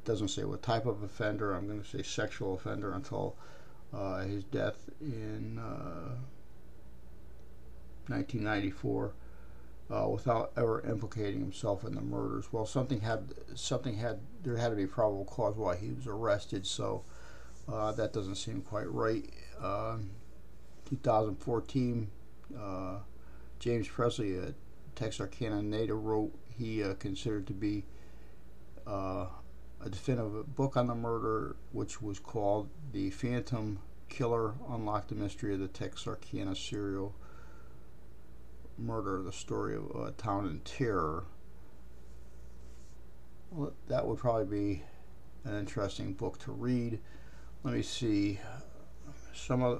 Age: 50-69